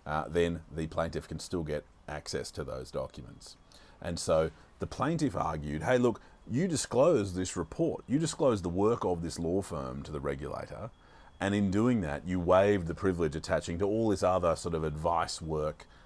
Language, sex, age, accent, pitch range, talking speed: English, male, 40-59, Australian, 75-95 Hz, 185 wpm